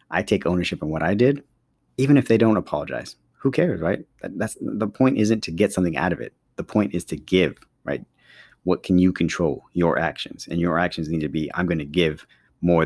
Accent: American